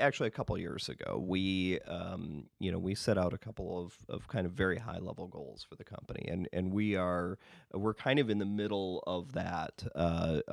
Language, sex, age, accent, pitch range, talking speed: English, male, 30-49, American, 90-100 Hz, 220 wpm